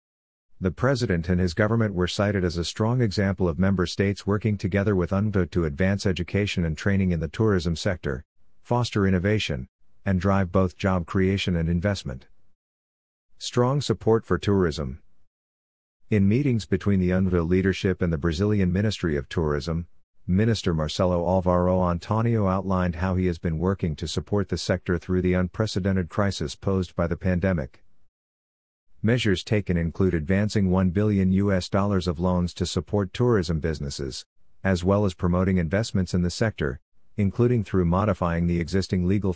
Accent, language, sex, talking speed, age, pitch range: American, English, male, 150 wpm, 50-69, 85-100 Hz